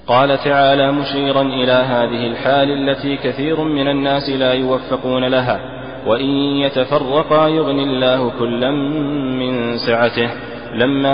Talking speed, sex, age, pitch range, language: 115 wpm, male, 20-39, 125-140 Hz, Arabic